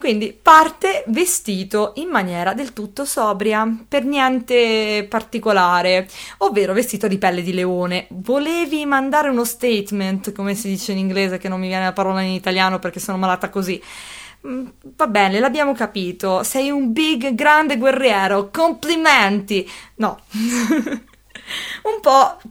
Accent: native